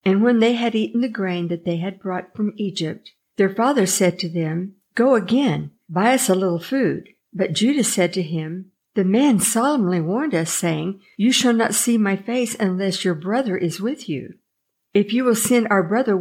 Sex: female